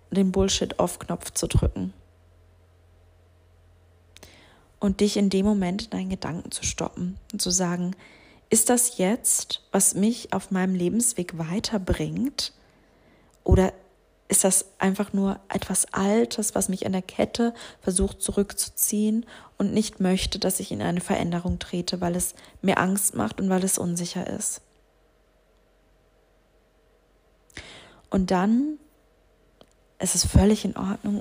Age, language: 20-39, German